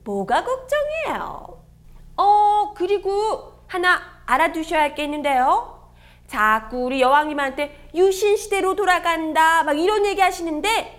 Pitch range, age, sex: 285-400 Hz, 30-49, female